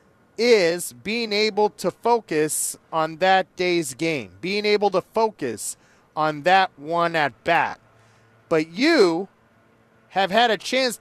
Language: English